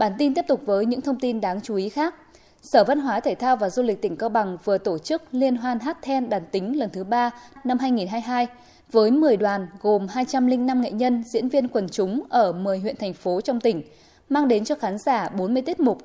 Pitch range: 205-275 Hz